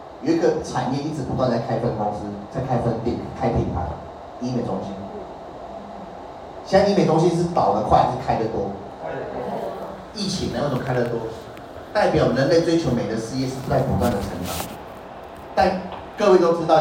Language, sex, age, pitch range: Chinese, male, 30-49, 115-145 Hz